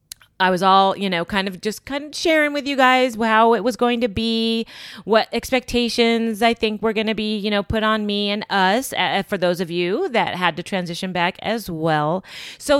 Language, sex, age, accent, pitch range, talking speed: English, female, 30-49, American, 175-235 Hz, 225 wpm